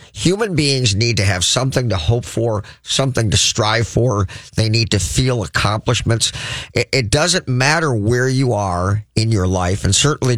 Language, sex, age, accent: English, male, 50-69, American